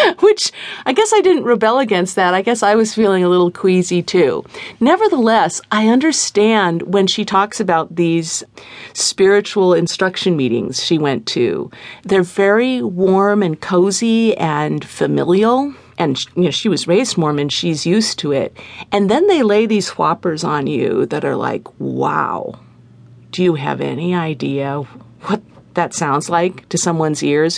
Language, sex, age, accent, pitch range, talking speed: English, female, 50-69, American, 150-220 Hz, 155 wpm